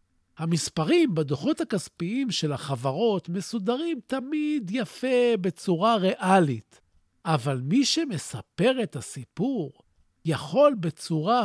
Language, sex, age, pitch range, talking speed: Hebrew, male, 50-69, 160-255 Hz, 90 wpm